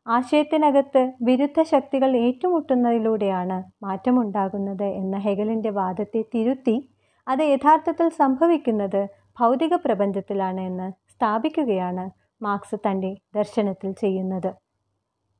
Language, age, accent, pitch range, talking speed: Malayalam, 30-49, native, 195-265 Hz, 75 wpm